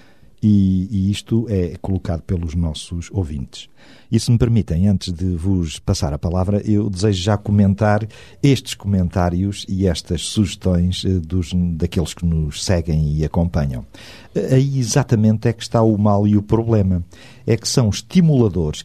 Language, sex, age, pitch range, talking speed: Portuguese, male, 50-69, 90-110 Hz, 155 wpm